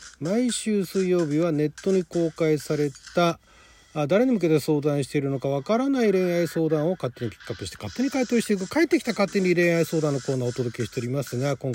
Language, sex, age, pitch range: Japanese, male, 40-59, 150-235 Hz